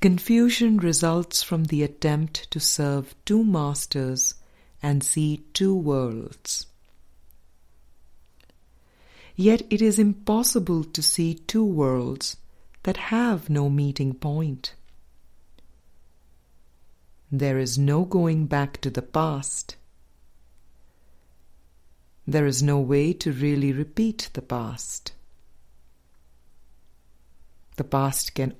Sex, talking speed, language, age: female, 95 wpm, English, 50-69